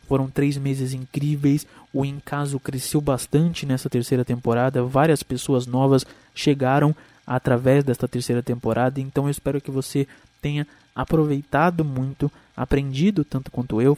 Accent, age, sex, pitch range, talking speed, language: Brazilian, 20-39, male, 125-145 Hz, 135 wpm, Portuguese